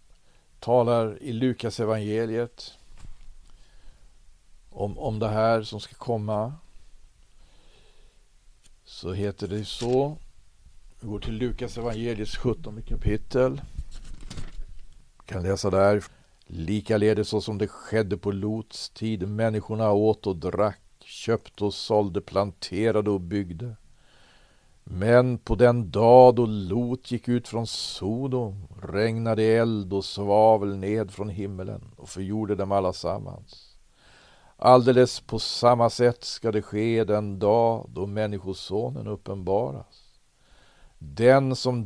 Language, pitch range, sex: Swedish, 100-115 Hz, male